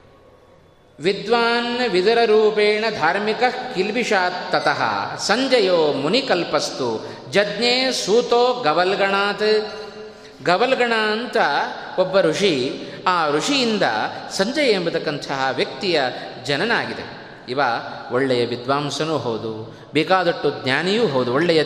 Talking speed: 80 wpm